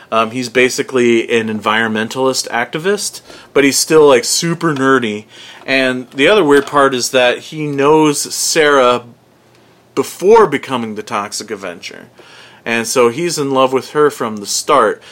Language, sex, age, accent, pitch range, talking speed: English, male, 40-59, American, 115-135 Hz, 145 wpm